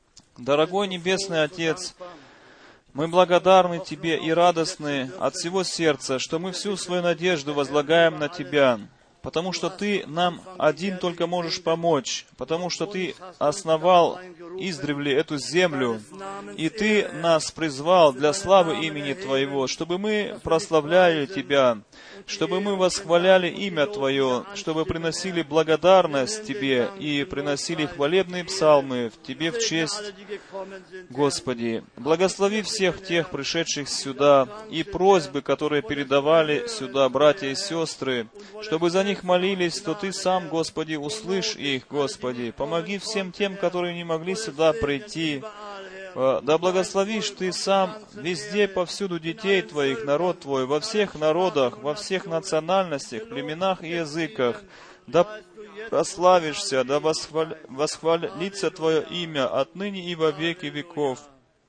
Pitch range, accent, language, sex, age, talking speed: 145-185 Hz, native, Russian, male, 30-49, 125 wpm